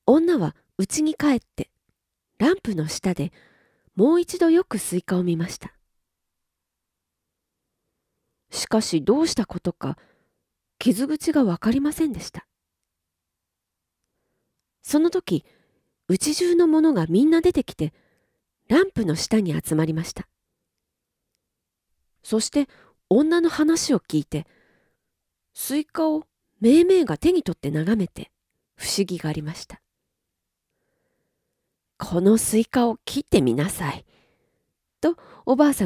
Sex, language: female, Japanese